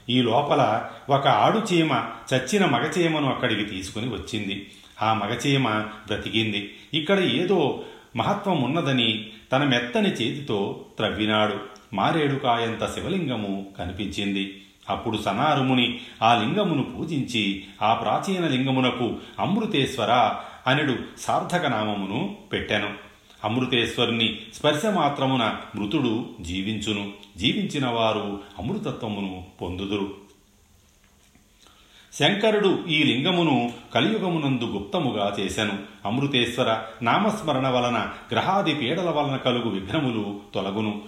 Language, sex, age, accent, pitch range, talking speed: Telugu, male, 40-59, native, 100-130 Hz, 80 wpm